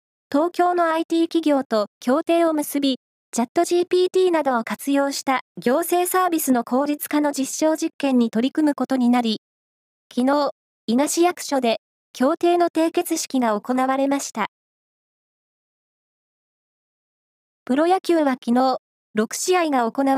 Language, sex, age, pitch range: Japanese, female, 20-39, 250-320 Hz